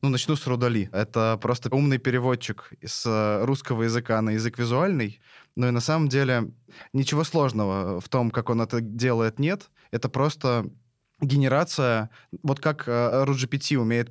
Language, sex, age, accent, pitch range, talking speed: Russian, male, 20-39, native, 110-130 Hz, 155 wpm